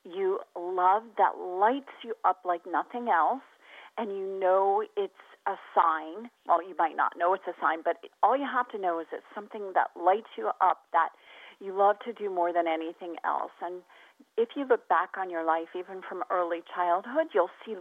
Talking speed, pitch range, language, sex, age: 200 wpm, 180-235 Hz, English, female, 40-59